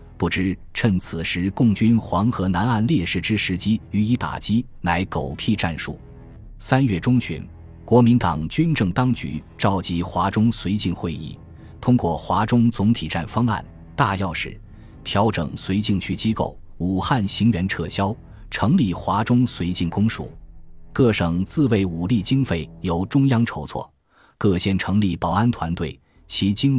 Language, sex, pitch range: Chinese, male, 85-110 Hz